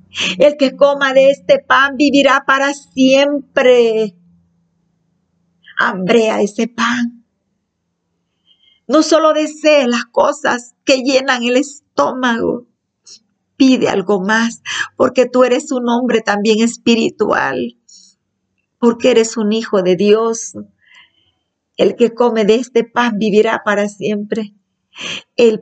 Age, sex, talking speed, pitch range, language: 50-69, female, 110 wpm, 215-260 Hz, Spanish